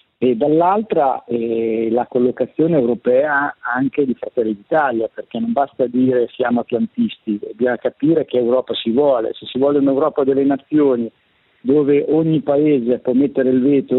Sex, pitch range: male, 125-155 Hz